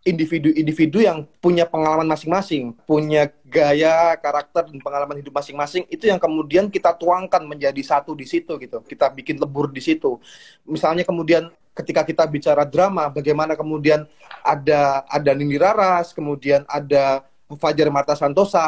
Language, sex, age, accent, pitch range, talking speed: Indonesian, male, 20-39, native, 145-175 Hz, 140 wpm